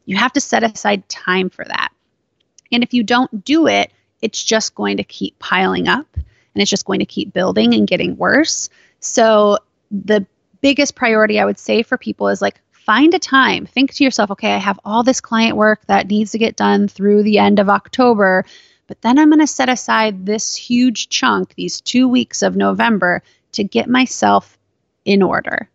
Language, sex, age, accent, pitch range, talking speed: English, female, 30-49, American, 190-240 Hz, 200 wpm